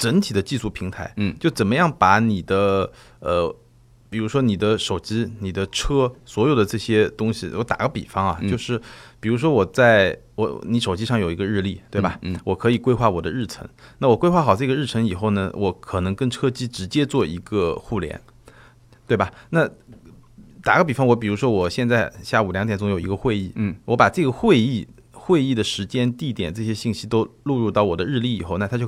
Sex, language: male, Chinese